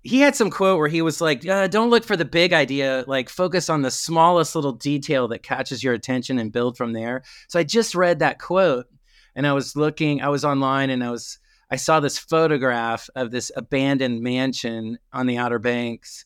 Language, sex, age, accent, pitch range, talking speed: English, male, 30-49, American, 120-150 Hz, 210 wpm